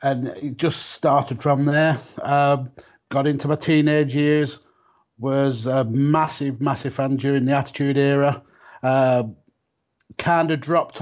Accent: British